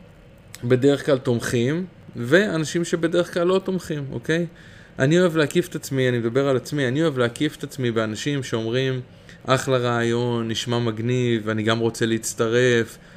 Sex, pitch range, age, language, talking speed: male, 115-140 Hz, 20-39, Hebrew, 150 wpm